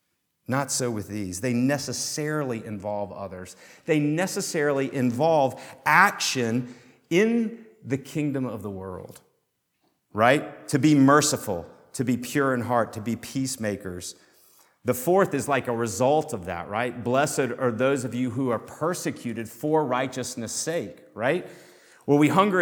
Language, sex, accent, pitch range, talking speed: English, male, American, 110-150 Hz, 145 wpm